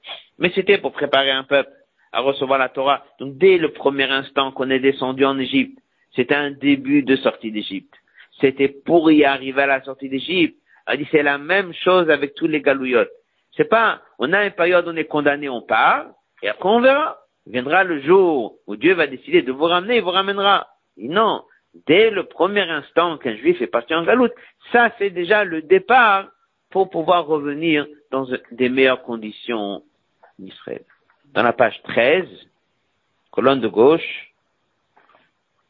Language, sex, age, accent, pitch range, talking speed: French, male, 50-69, French, 135-200 Hz, 165 wpm